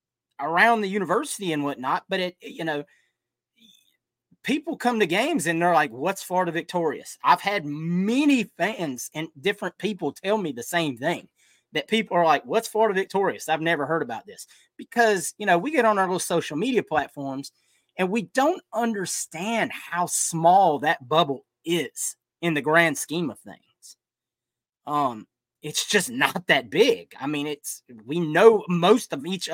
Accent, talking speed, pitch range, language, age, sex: American, 170 wpm, 155-220 Hz, English, 30-49, male